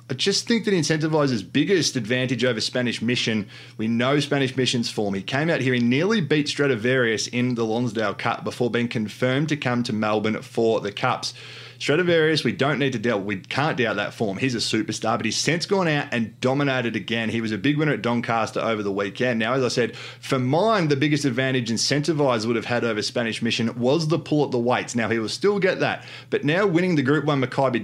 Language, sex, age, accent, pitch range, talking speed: English, male, 20-39, Australian, 115-140 Hz, 225 wpm